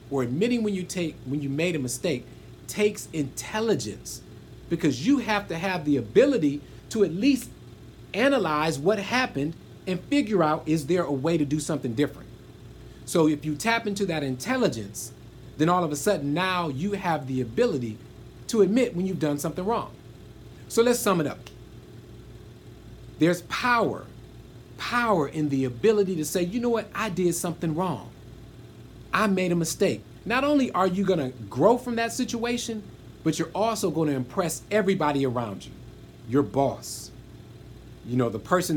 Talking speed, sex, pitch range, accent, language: 170 wpm, male, 130-200 Hz, American, English